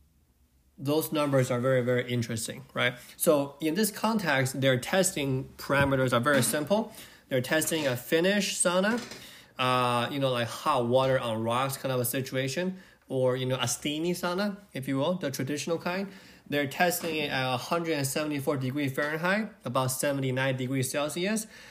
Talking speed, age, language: 160 wpm, 20-39, English